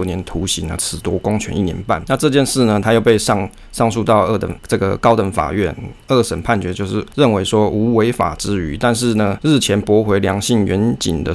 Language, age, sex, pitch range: Chinese, 20-39, male, 95-115 Hz